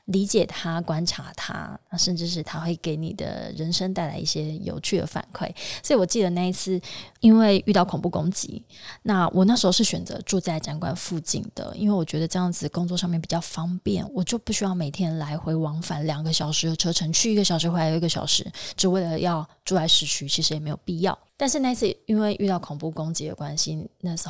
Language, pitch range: Chinese, 160-195 Hz